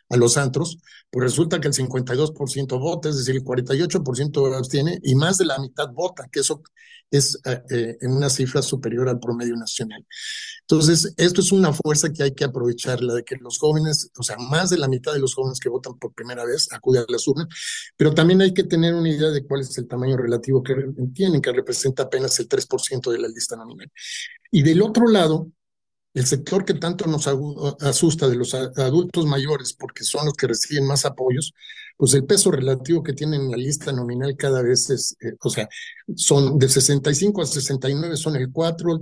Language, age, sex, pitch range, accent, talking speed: Spanish, 50-69, male, 135-170 Hz, Mexican, 205 wpm